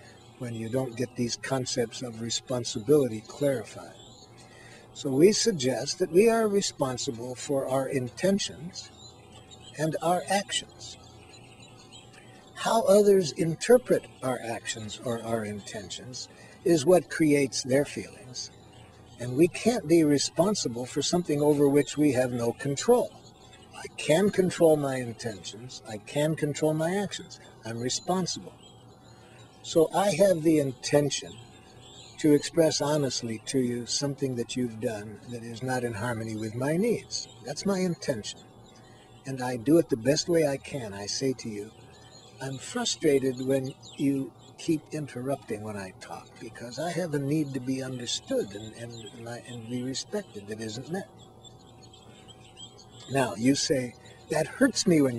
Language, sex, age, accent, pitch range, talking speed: English, male, 60-79, American, 120-155 Hz, 145 wpm